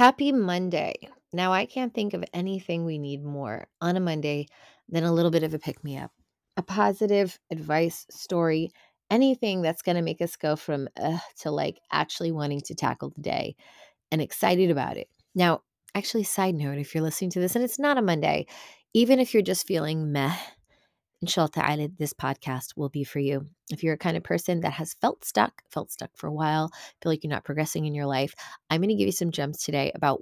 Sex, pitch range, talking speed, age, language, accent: female, 150-195 Hz, 210 wpm, 20-39, English, American